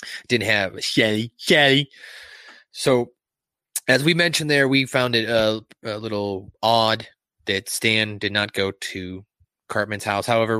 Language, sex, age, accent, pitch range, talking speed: English, male, 20-39, American, 100-125 Hz, 145 wpm